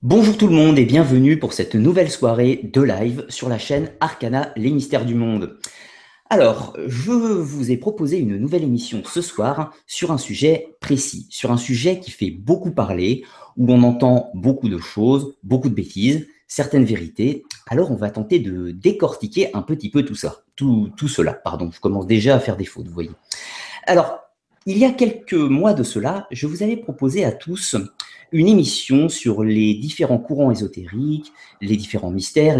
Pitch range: 110-160 Hz